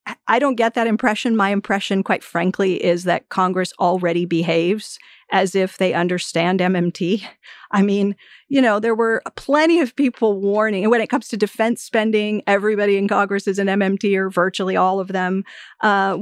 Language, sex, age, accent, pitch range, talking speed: English, female, 40-59, American, 185-220 Hz, 180 wpm